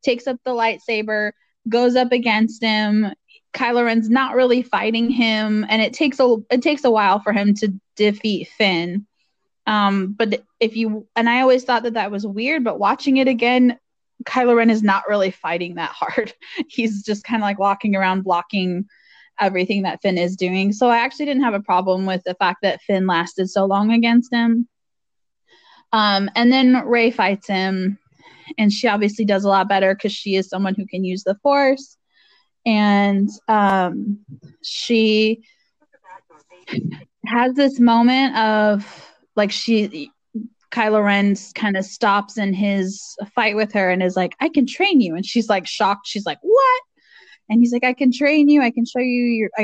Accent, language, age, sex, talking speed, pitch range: American, English, 20-39, female, 180 wpm, 200-250 Hz